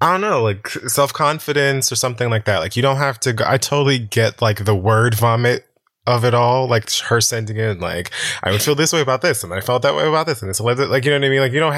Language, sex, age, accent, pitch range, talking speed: English, male, 20-39, American, 95-125 Hz, 275 wpm